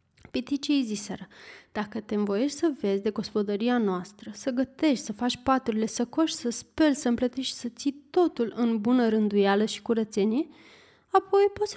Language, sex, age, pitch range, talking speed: Romanian, female, 20-39, 215-285 Hz, 165 wpm